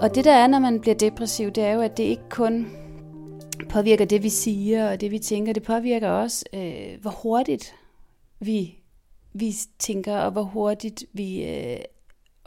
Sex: female